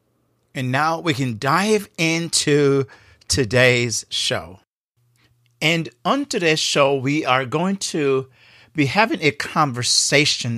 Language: English